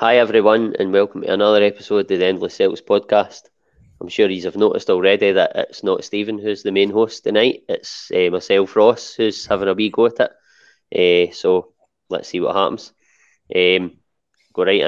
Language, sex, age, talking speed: English, male, 20-39, 185 wpm